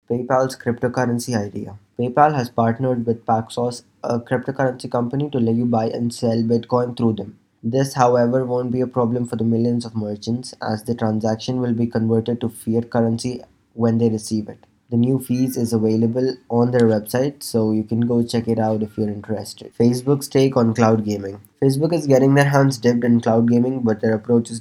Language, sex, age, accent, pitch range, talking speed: English, male, 20-39, Indian, 110-125 Hz, 195 wpm